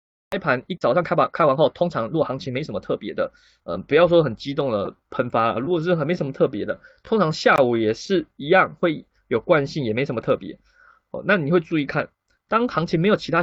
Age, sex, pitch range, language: 20-39, male, 140-200 Hz, Chinese